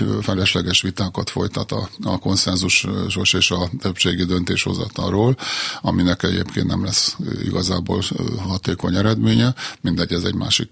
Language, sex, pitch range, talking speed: Hungarian, male, 90-110 Hz, 120 wpm